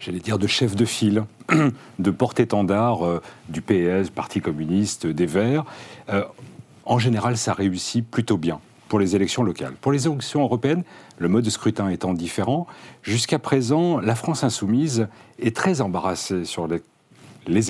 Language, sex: French, male